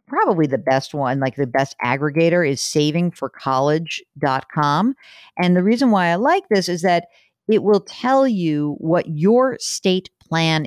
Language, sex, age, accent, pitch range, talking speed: English, female, 50-69, American, 145-195 Hz, 150 wpm